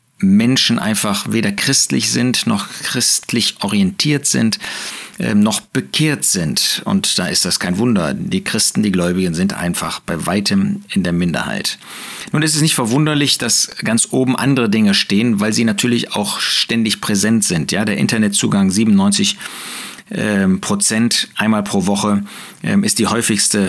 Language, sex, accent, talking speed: German, male, German, 150 wpm